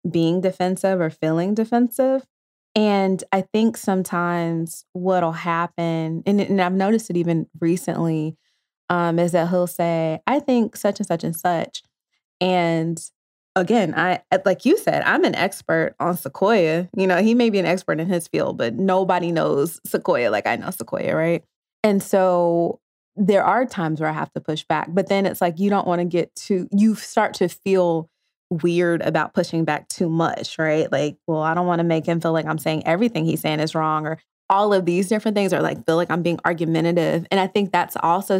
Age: 20-39